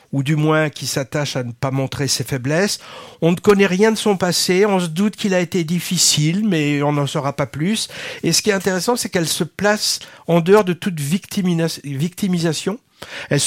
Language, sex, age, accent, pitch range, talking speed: French, male, 50-69, French, 145-190 Hz, 210 wpm